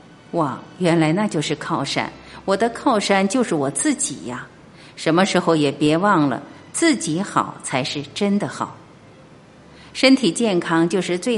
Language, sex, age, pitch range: Chinese, female, 50-69, 145-205 Hz